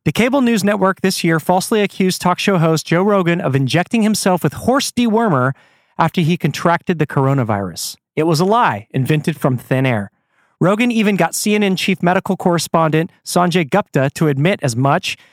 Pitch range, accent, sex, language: 150-200 Hz, American, male, English